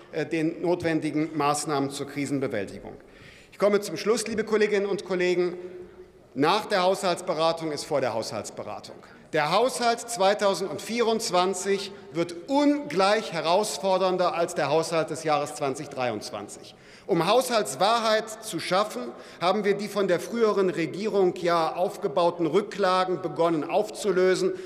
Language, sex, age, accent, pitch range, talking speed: German, male, 50-69, German, 165-210 Hz, 115 wpm